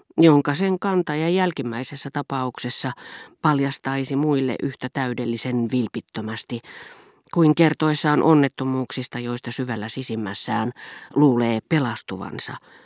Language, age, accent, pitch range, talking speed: Finnish, 40-59, native, 120-155 Hz, 85 wpm